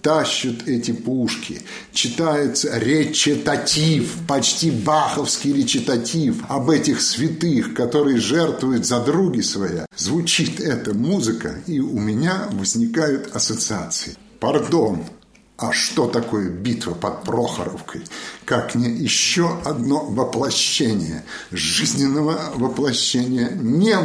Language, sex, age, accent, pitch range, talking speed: Russian, male, 50-69, native, 130-170 Hz, 95 wpm